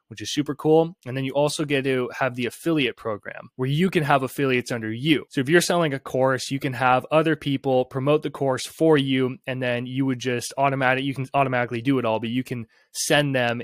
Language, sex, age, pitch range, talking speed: English, male, 20-39, 125-155 Hz, 240 wpm